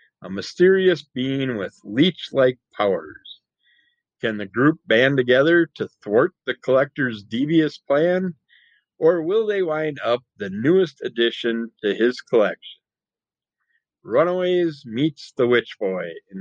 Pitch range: 105-135 Hz